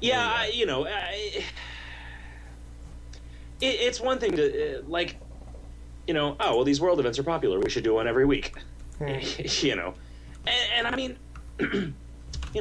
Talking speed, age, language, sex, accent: 160 wpm, 30-49, English, male, American